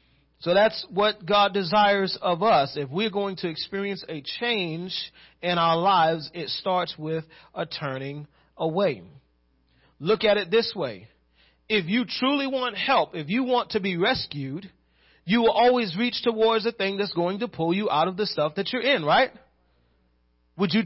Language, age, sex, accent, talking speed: English, 40-59, male, American, 175 wpm